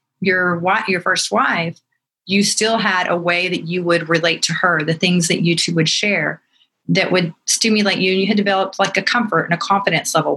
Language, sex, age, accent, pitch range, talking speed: English, female, 30-49, American, 170-200 Hz, 220 wpm